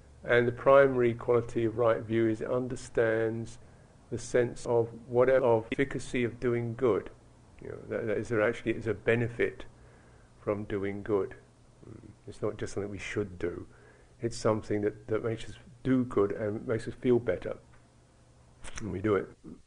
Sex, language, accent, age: male, English, British, 50-69